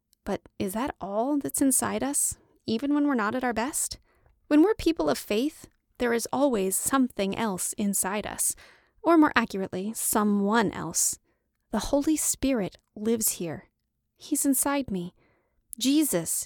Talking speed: 145 wpm